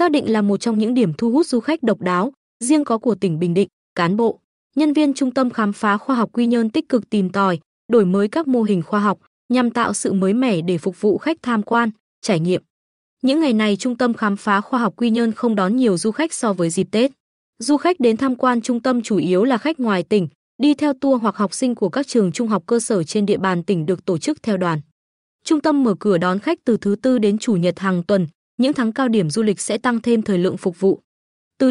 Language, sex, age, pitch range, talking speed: Vietnamese, female, 20-39, 200-250 Hz, 260 wpm